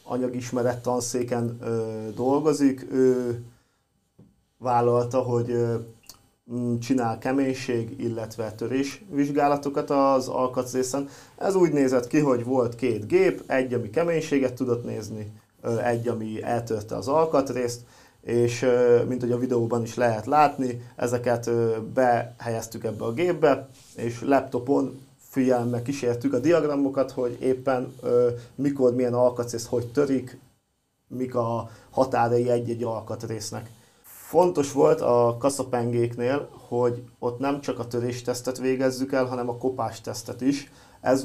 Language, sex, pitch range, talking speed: Hungarian, male, 120-135 Hz, 110 wpm